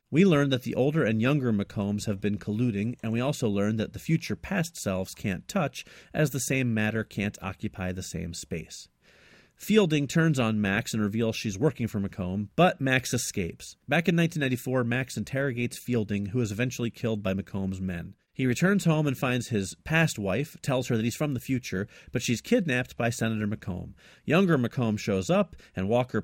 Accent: American